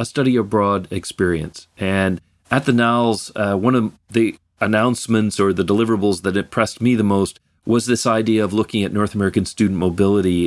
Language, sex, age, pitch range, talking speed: English, male, 40-59, 100-125 Hz, 180 wpm